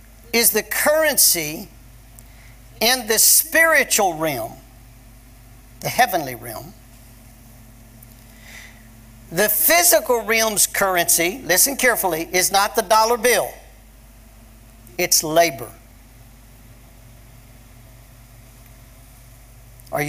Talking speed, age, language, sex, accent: 70 wpm, 50-69, English, male, American